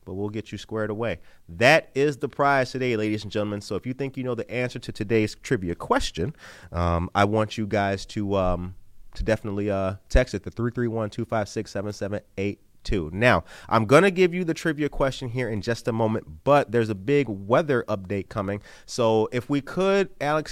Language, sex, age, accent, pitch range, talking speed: English, male, 30-49, American, 105-135 Hz, 220 wpm